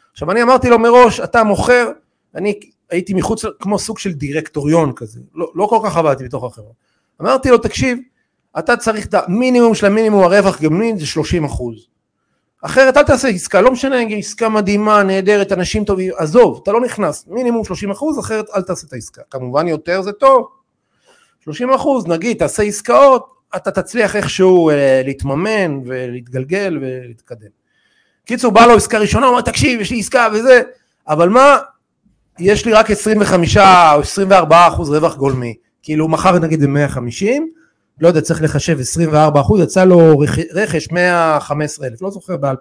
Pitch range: 150-225 Hz